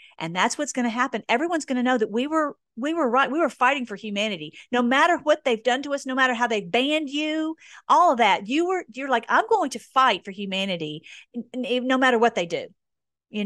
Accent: American